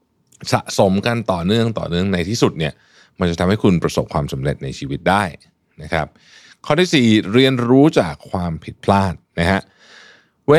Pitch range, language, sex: 90-130 Hz, Thai, male